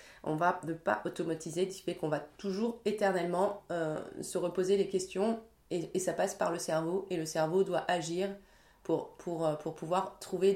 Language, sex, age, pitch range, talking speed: French, female, 20-39, 165-210 Hz, 180 wpm